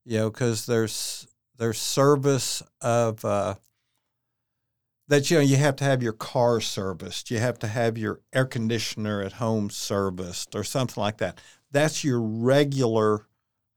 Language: English